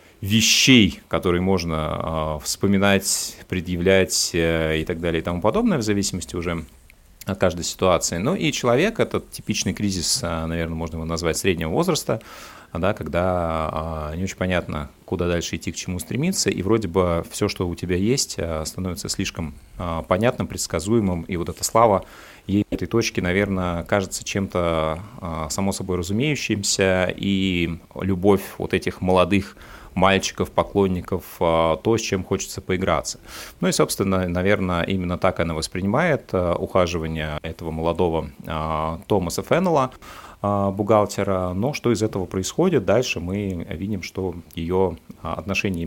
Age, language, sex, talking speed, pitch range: 30-49, Russian, male, 130 wpm, 85-100 Hz